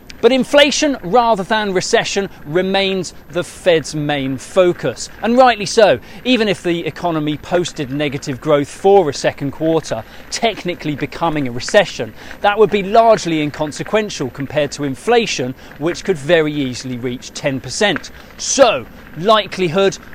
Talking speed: 130 wpm